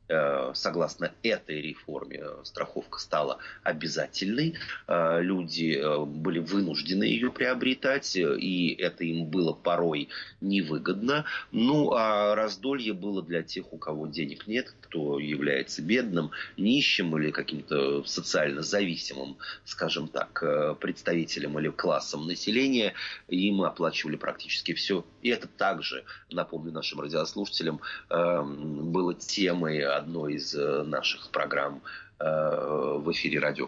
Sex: male